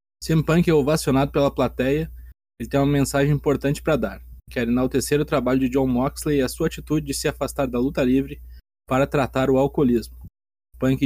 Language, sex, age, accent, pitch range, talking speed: Portuguese, male, 20-39, Brazilian, 120-140 Hz, 185 wpm